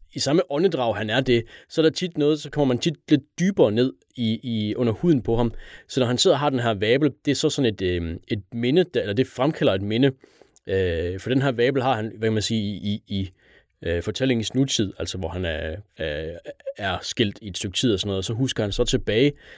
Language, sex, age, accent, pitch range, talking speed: Danish, male, 30-49, native, 105-130 Hz, 245 wpm